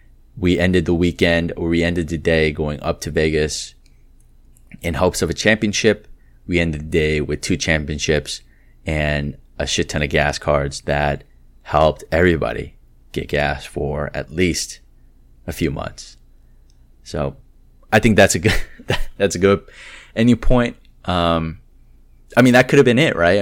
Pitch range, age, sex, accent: 70-90 Hz, 20-39, male, American